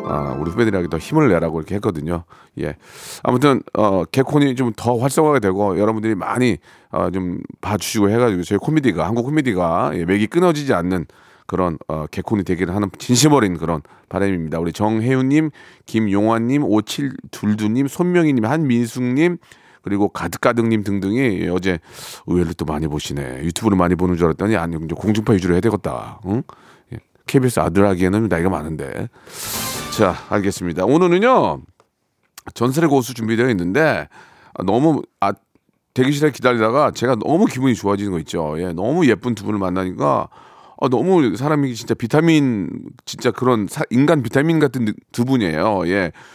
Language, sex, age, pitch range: Korean, male, 40-59, 95-135 Hz